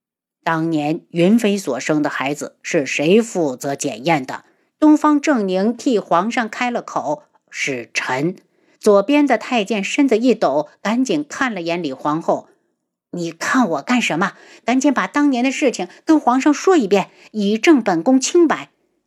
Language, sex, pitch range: Chinese, female, 180-260 Hz